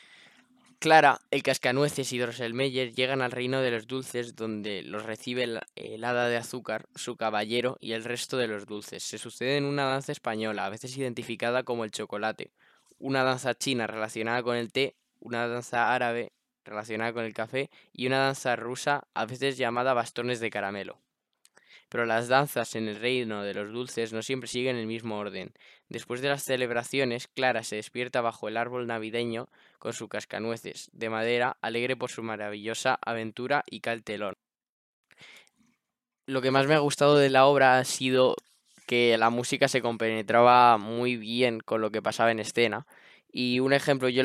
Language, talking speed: Spanish, 175 wpm